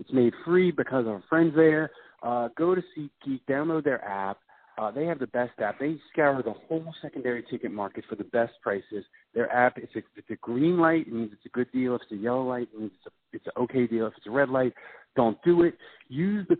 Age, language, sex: 40-59, English, male